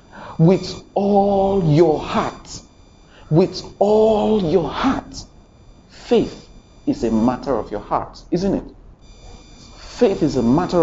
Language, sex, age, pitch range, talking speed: English, male, 50-69, 140-230 Hz, 115 wpm